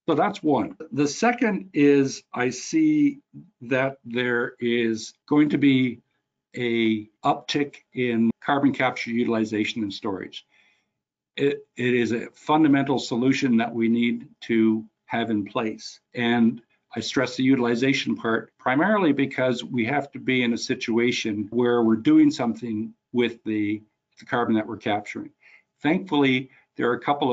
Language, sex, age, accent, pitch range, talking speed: English, male, 60-79, American, 115-140 Hz, 145 wpm